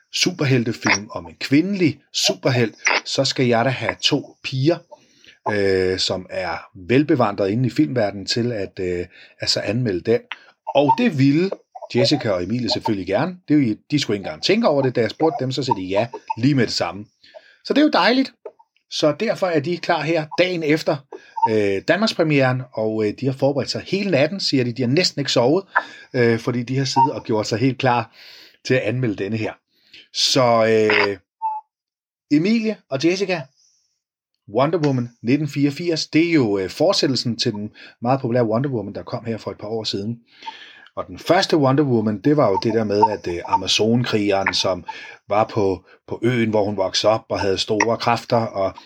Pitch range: 110-155 Hz